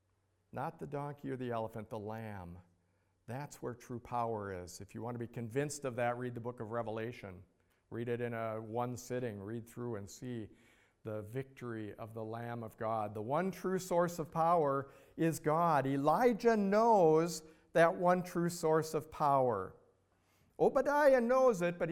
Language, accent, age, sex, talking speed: English, American, 50-69, male, 170 wpm